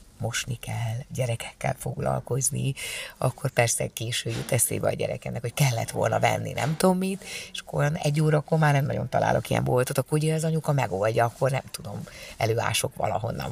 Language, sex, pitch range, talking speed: Hungarian, female, 130-155 Hz, 170 wpm